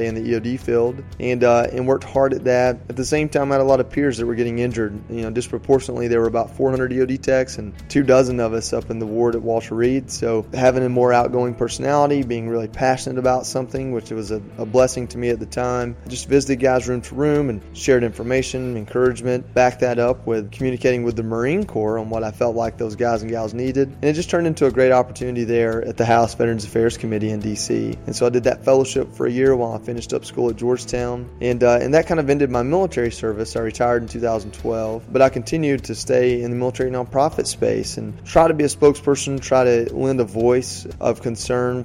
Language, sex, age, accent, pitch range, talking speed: English, male, 30-49, American, 115-130 Hz, 240 wpm